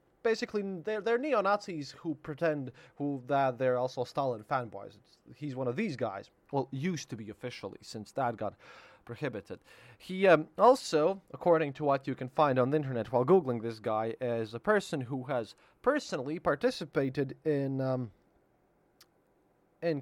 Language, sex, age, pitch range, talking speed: English, male, 20-39, 130-170 Hz, 160 wpm